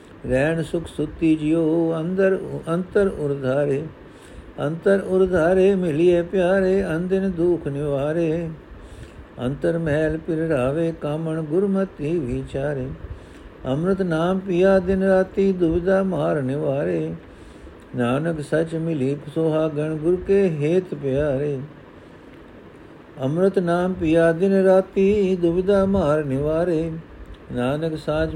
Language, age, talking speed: Punjabi, 60-79, 110 wpm